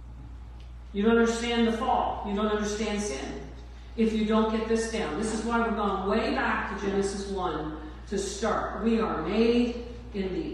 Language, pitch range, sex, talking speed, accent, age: English, 215-300 Hz, female, 180 wpm, American, 50-69